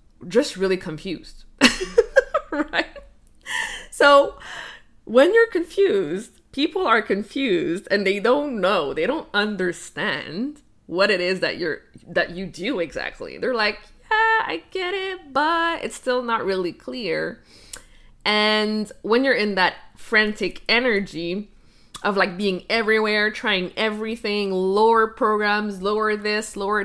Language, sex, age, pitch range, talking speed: English, female, 20-39, 190-260 Hz, 125 wpm